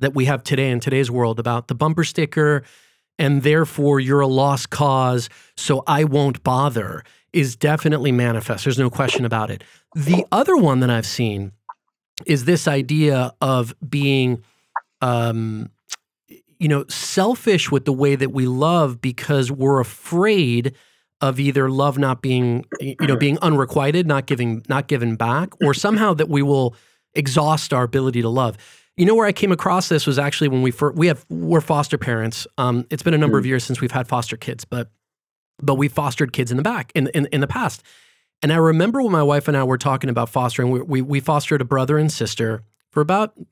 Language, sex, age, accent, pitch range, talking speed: English, male, 30-49, American, 125-155 Hz, 195 wpm